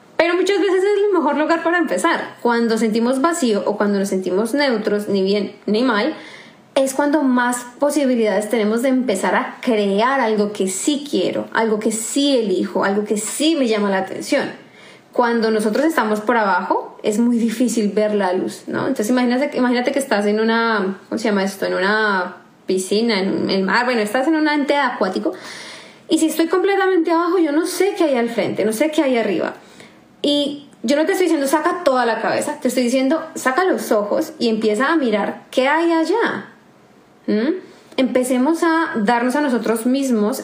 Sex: female